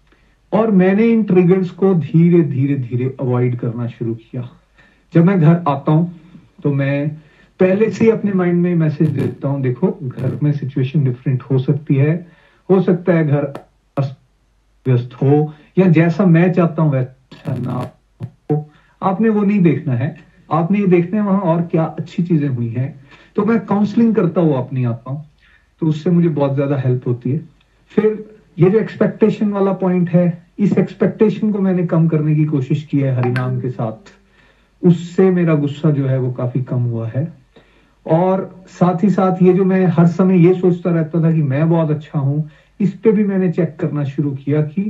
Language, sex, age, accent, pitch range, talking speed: Hindi, male, 40-59, native, 135-180 Hz, 180 wpm